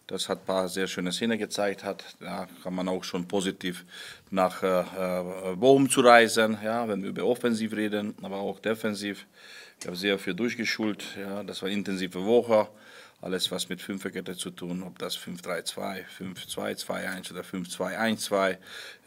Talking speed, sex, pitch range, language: 165 wpm, male, 95-110 Hz, German